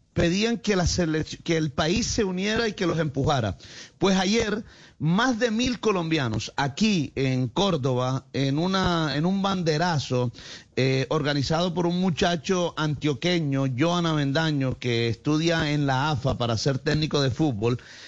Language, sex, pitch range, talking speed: Spanish, male, 130-165 Hz, 150 wpm